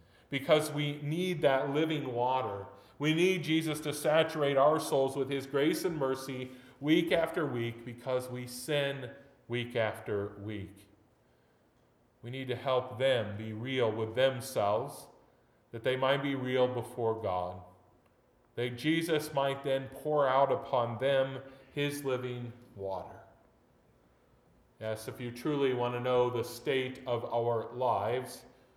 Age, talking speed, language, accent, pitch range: 40-59, 140 wpm, English, American, 115-145 Hz